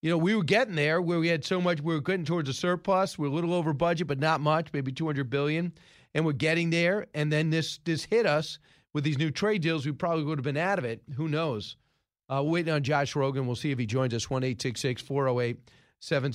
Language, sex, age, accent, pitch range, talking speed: English, male, 40-59, American, 125-160 Hz, 270 wpm